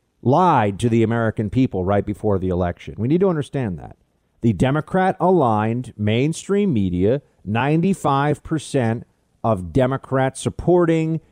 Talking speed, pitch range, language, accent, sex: 125 wpm, 105-150 Hz, English, American, male